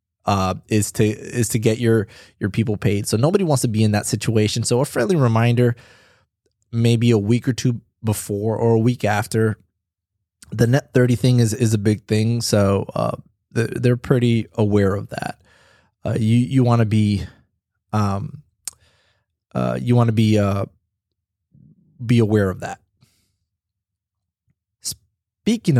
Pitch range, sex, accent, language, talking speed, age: 105-125 Hz, male, American, English, 155 wpm, 20-39